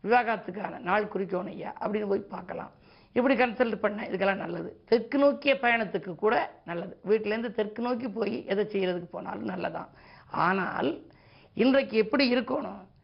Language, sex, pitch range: Tamil, female, 200-250 Hz